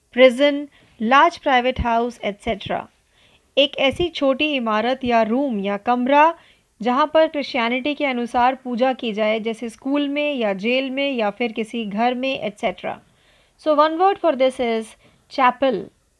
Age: 30-49